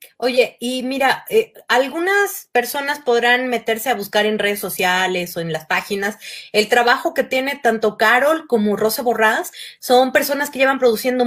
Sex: female